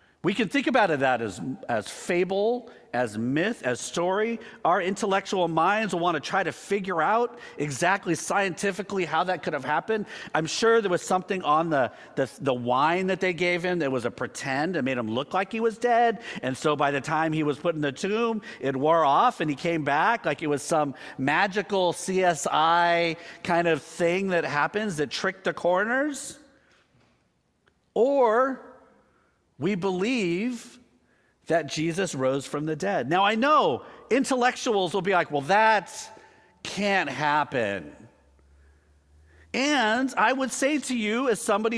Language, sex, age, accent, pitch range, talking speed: English, male, 50-69, American, 155-215 Hz, 170 wpm